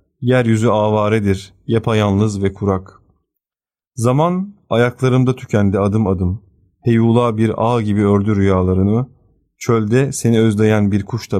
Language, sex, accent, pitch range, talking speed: Turkish, male, native, 100-120 Hz, 115 wpm